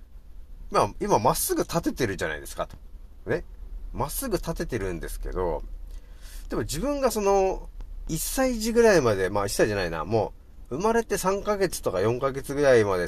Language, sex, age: Japanese, male, 40-59